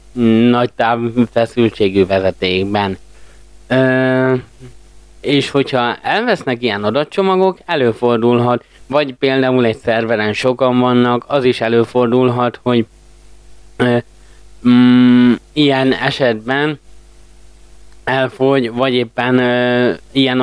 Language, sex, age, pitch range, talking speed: Hungarian, male, 20-39, 110-130 Hz, 90 wpm